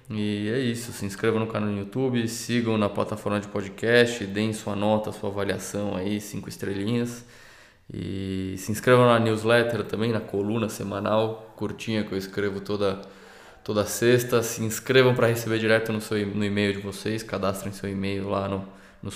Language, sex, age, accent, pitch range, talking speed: Portuguese, male, 20-39, Brazilian, 100-115 Hz, 170 wpm